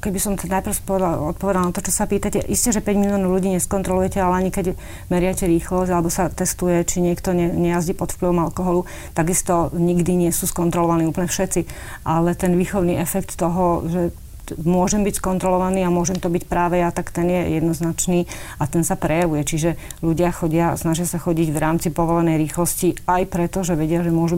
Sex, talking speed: female, 190 wpm